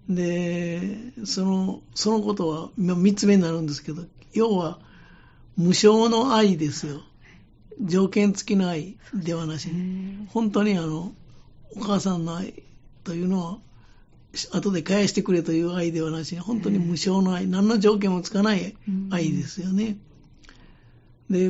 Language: Japanese